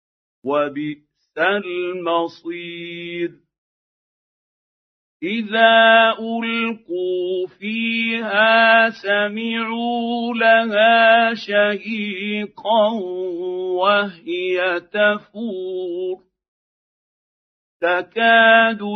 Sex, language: male, Arabic